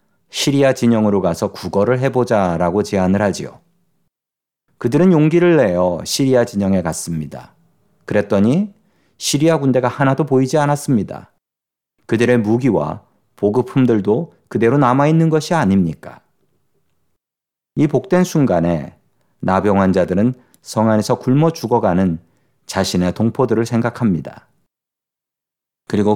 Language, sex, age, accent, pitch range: Korean, male, 40-59, native, 95-130 Hz